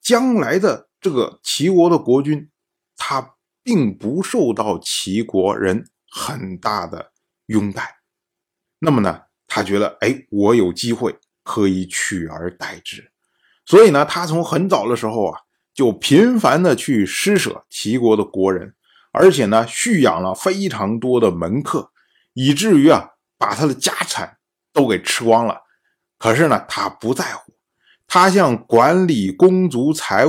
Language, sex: Chinese, male